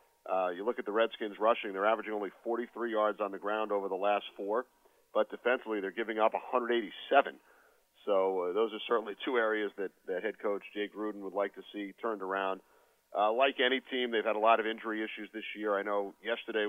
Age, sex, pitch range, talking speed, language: 40-59, male, 105-110 Hz, 215 wpm, English